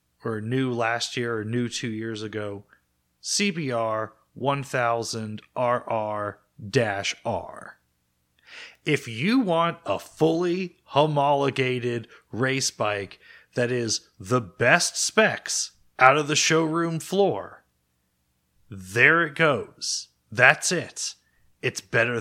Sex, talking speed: male, 100 wpm